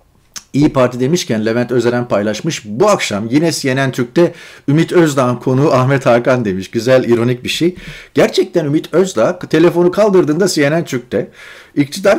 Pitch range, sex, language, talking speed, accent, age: 120-170 Hz, male, Turkish, 145 wpm, native, 40-59